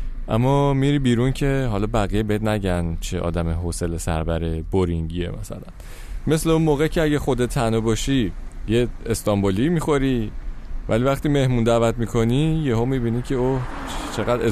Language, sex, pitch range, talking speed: Persian, male, 95-135 Hz, 145 wpm